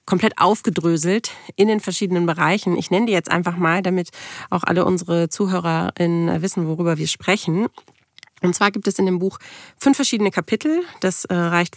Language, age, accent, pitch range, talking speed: German, 30-49, German, 175-205 Hz, 170 wpm